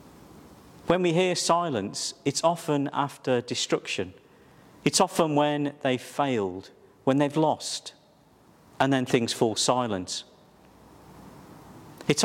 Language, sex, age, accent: English, male, 50-69, British